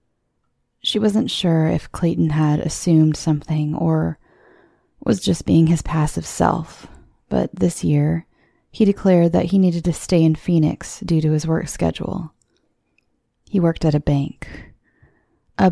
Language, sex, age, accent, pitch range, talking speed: English, female, 20-39, American, 150-170 Hz, 145 wpm